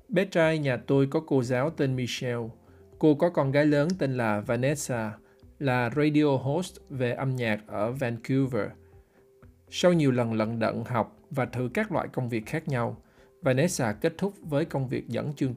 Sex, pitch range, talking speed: male, 120-150 Hz, 180 wpm